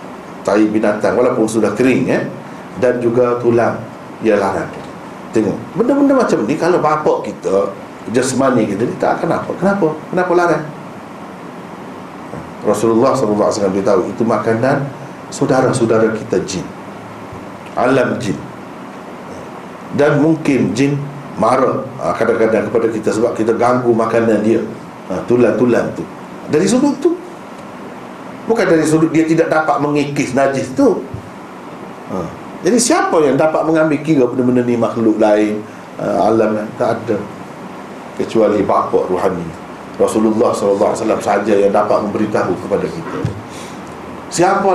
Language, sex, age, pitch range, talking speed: Malay, male, 50-69, 110-160 Hz, 120 wpm